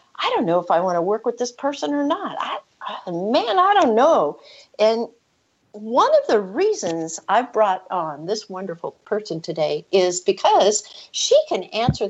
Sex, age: female, 60-79